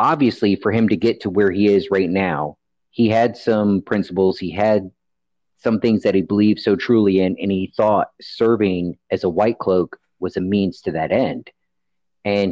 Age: 40-59